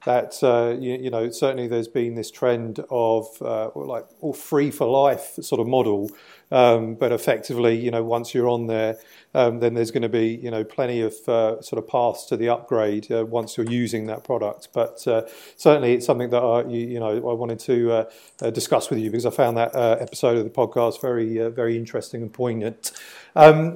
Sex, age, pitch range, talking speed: male, 40-59, 115-135 Hz, 210 wpm